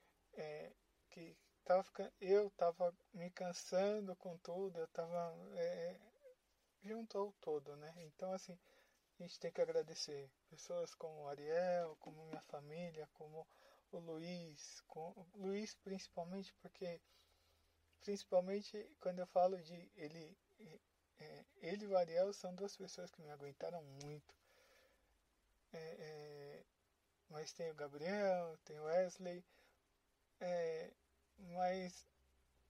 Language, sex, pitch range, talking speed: Portuguese, male, 155-195 Hz, 110 wpm